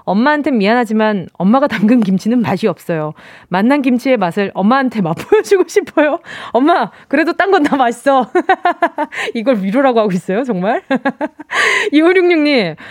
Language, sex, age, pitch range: Korean, female, 20-39, 215-310 Hz